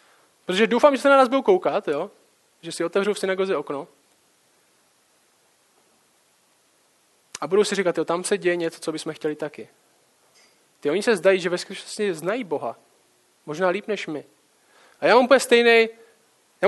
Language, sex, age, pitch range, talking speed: Czech, male, 20-39, 170-205 Hz, 155 wpm